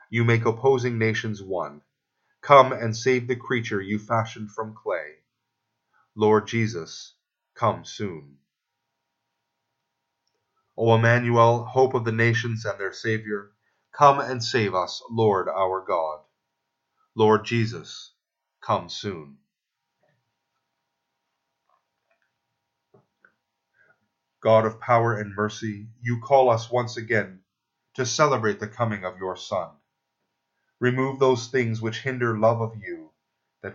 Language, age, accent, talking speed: English, 30-49, American, 115 wpm